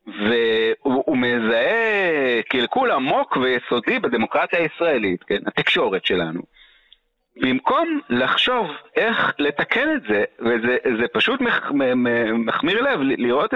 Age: 40-59